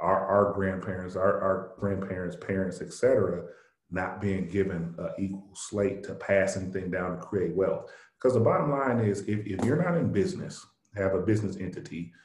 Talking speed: 180 wpm